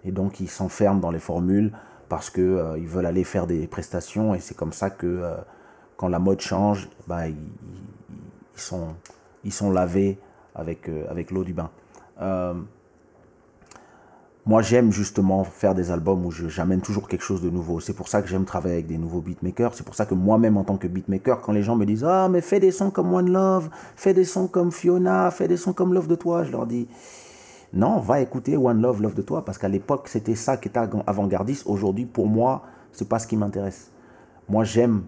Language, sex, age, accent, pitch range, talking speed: English, male, 30-49, French, 95-115 Hz, 220 wpm